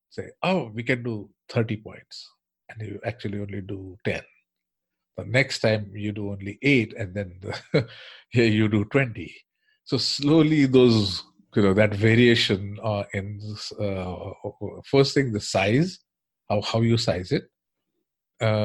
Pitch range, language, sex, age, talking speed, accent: 100-120 Hz, English, male, 50-69, 145 wpm, Indian